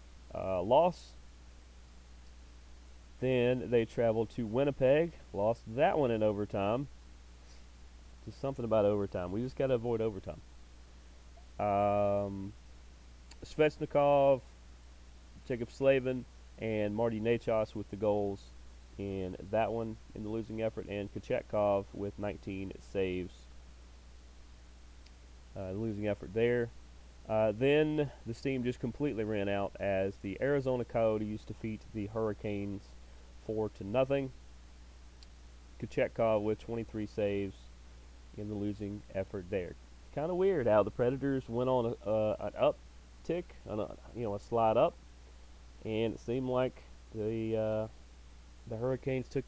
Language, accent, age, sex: English, American, 30-49, male